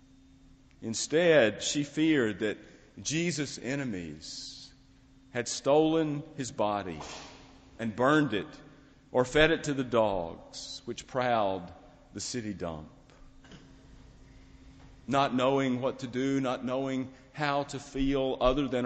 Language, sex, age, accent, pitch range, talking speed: English, male, 50-69, American, 120-140 Hz, 115 wpm